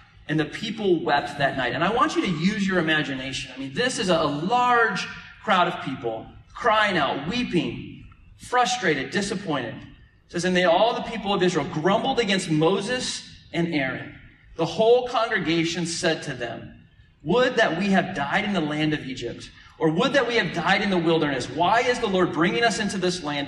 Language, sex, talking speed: English, male, 195 wpm